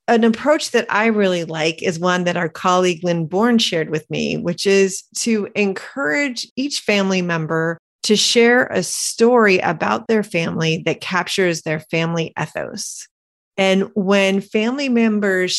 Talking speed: 150 wpm